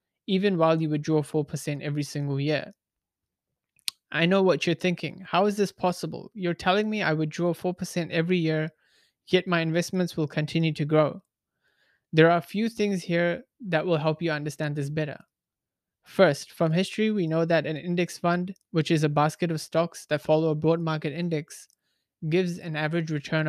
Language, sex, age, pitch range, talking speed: English, male, 20-39, 155-180 Hz, 180 wpm